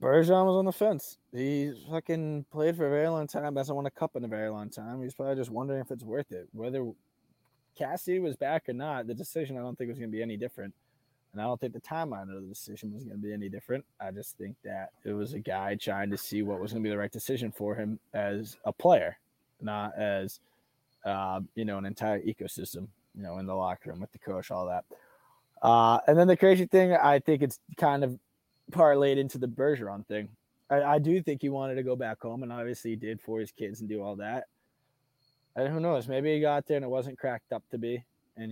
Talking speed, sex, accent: 240 wpm, male, American